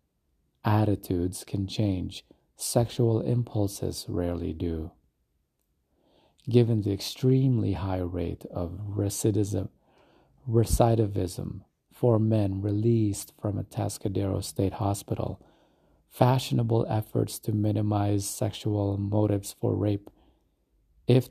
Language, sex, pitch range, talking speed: English, male, 95-110 Hz, 90 wpm